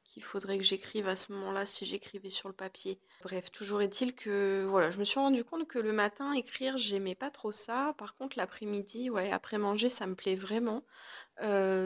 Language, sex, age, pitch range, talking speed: French, female, 20-39, 190-230 Hz, 210 wpm